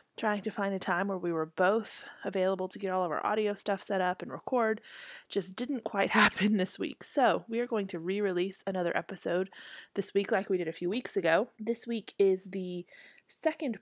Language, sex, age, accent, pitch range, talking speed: English, female, 20-39, American, 175-215 Hz, 215 wpm